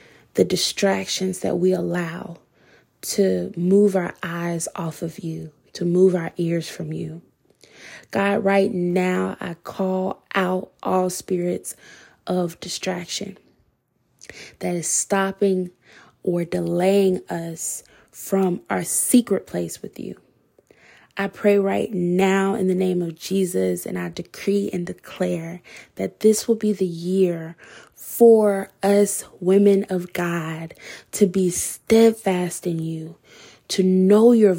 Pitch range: 175-200 Hz